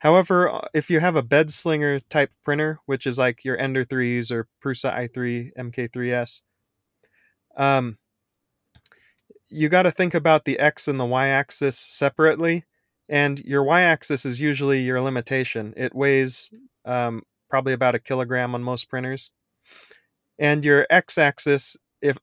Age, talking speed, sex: 20-39, 145 wpm, male